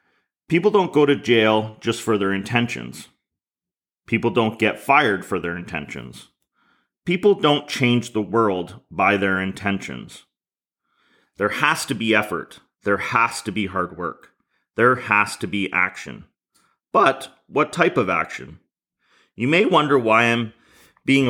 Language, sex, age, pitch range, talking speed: English, male, 30-49, 105-135 Hz, 145 wpm